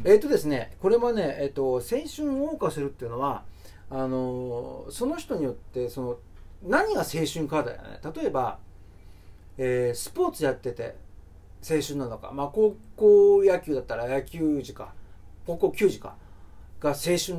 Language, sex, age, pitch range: Japanese, male, 40-59, 120-180 Hz